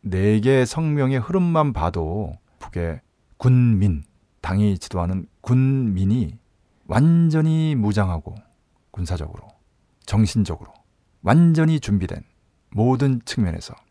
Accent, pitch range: native, 95-125 Hz